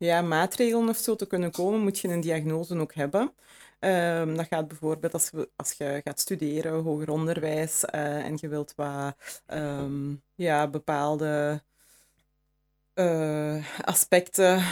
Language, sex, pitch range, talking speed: Dutch, female, 155-180 Hz, 145 wpm